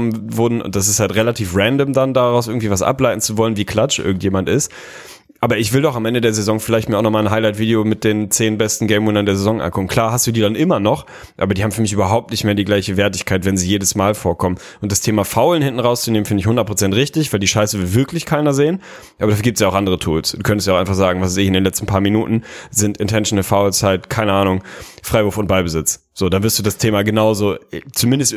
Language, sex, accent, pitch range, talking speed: German, male, German, 100-120 Hz, 250 wpm